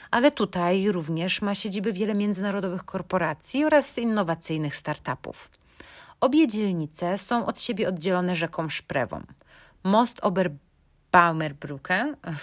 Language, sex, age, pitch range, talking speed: Polish, female, 30-49, 165-220 Hz, 100 wpm